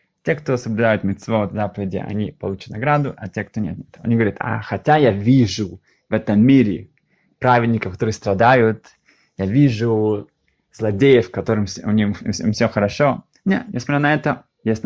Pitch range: 105-130 Hz